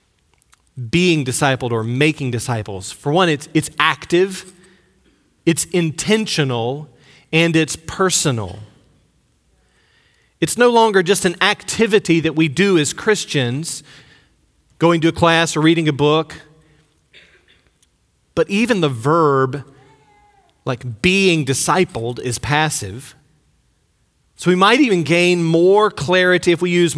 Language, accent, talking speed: English, American, 120 wpm